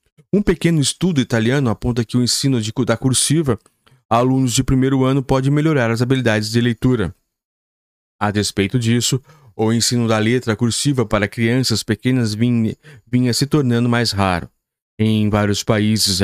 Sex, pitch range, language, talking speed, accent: male, 110-140 Hz, Portuguese, 155 wpm, Brazilian